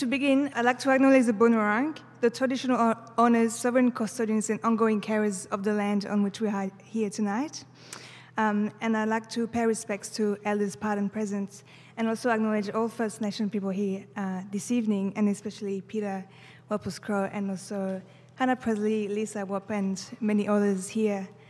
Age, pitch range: 20-39, 200-235 Hz